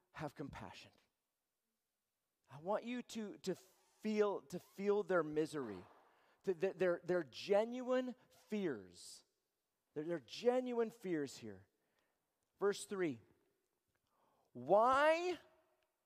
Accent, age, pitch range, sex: American, 40-59, 210-280 Hz, male